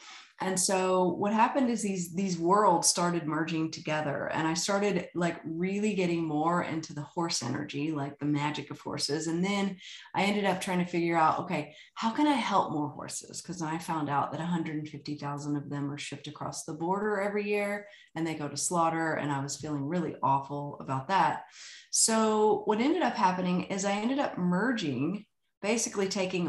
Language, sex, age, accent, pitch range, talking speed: English, female, 30-49, American, 150-200 Hz, 190 wpm